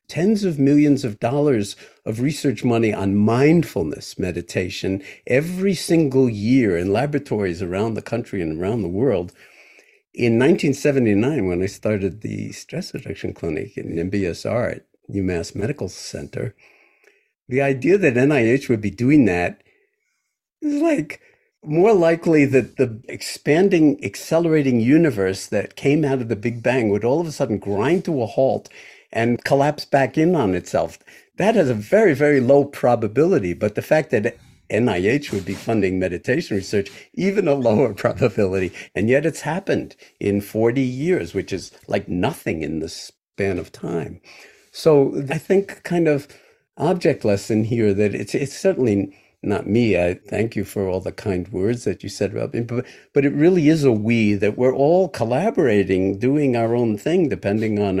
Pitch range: 100-145 Hz